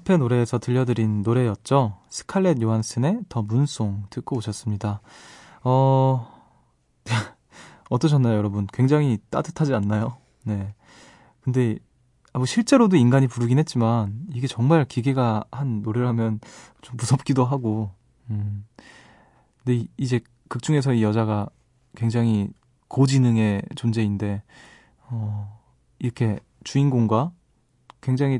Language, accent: Korean, native